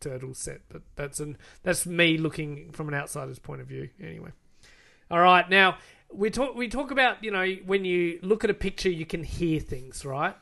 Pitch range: 150-180 Hz